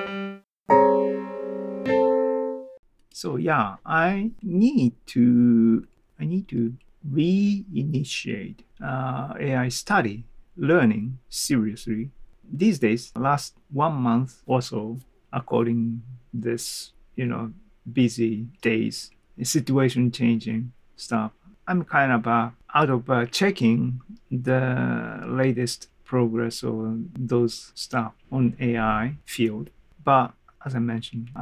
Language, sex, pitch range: Japanese, male, 115-130 Hz